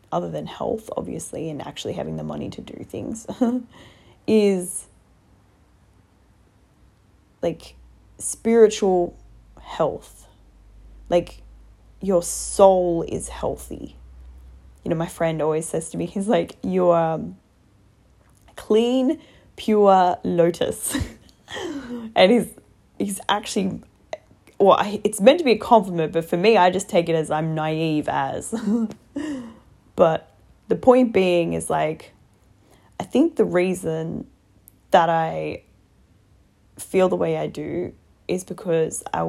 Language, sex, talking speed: English, female, 120 wpm